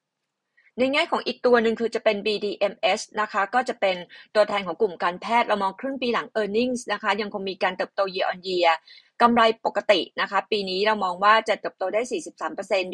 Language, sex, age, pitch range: Thai, female, 20-39, 185-235 Hz